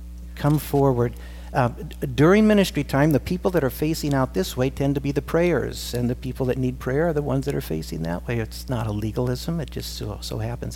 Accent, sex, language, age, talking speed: American, male, English, 60-79, 235 wpm